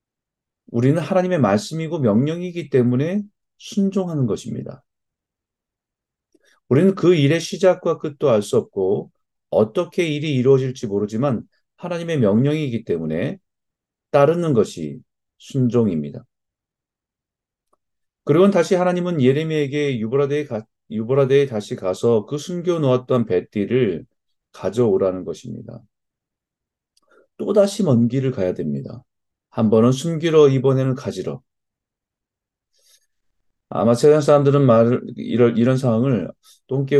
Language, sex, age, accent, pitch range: Korean, male, 40-59, native, 115-165 Hz